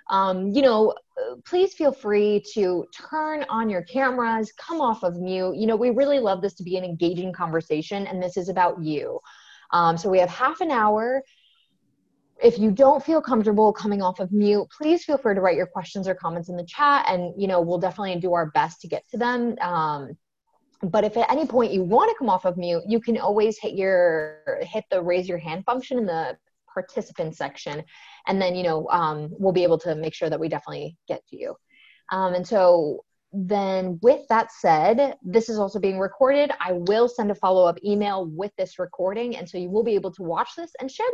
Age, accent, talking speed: 20-39, American, 215 wpm